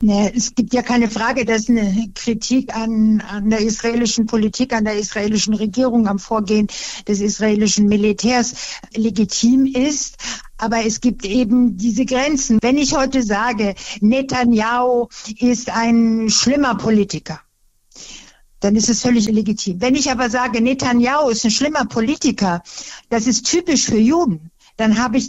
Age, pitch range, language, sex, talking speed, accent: 60-79, 215-245 Hz, German, female, 145 wpm, German